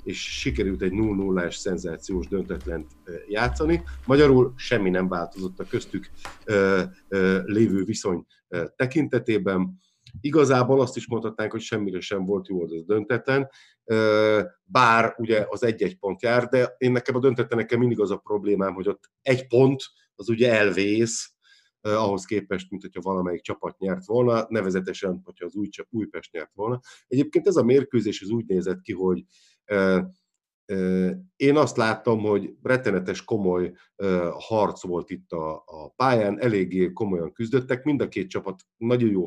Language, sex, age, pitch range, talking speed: Hungarian, male, 50-69, 95-125 Hz, 140 wpm